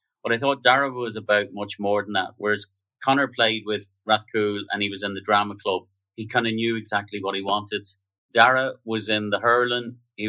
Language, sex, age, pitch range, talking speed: English, male, 30-49, 100-110 Hz, 210 wpm